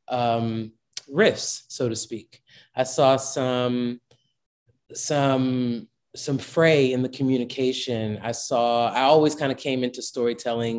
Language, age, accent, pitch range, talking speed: English, 30-49, American, 115-130 Hz, 130 wpm